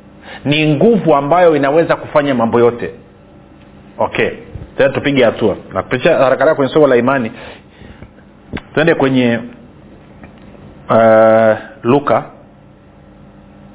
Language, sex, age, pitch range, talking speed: Swahili, male, 40-59, 120-155 Hz, 90 wpm